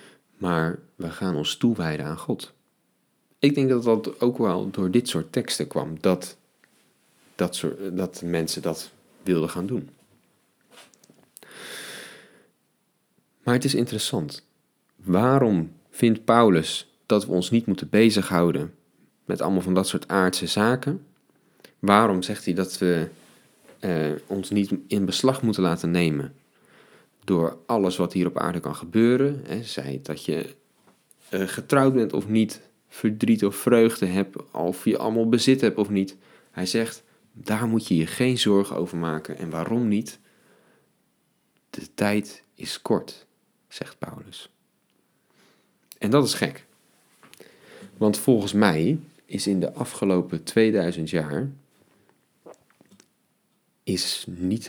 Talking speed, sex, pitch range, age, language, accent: 130 wpm, male, 90-115 Hz, 40-59, Dutch, Dutch